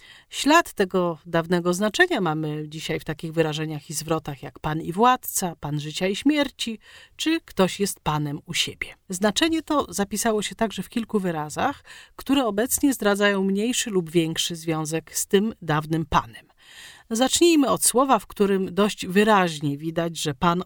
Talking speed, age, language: 155 wpm, 40-59, Polish